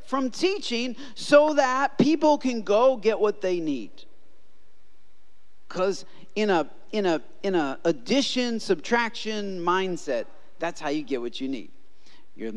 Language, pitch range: English, 205-305 Hz